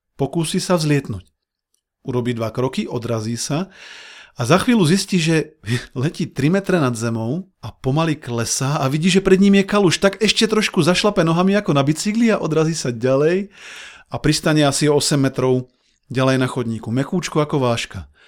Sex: male